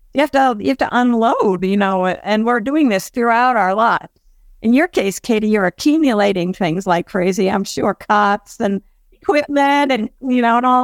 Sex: female